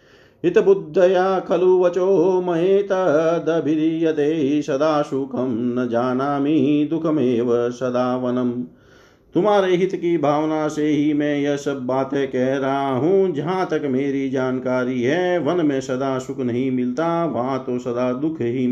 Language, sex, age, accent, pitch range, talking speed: Hindi, male, 50-69, native, 125-170 Hz, 130 wpm